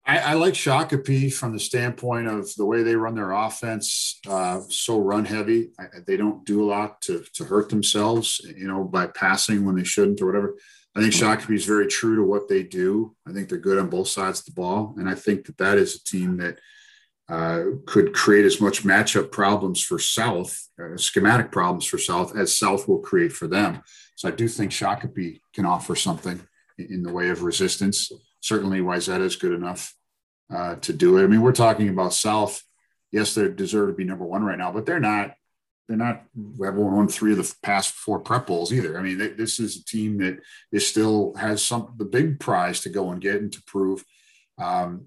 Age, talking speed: 50-69, 215 wpm